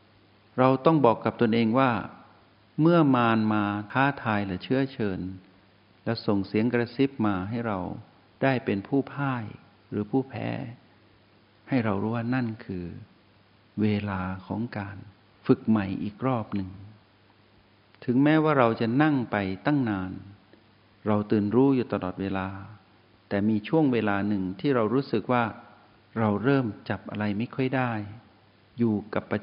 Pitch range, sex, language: 105-130 Hz, male, Thai